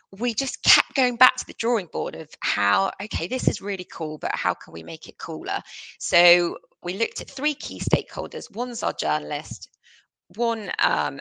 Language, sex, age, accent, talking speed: English, female, 20-39, British, 185 wpm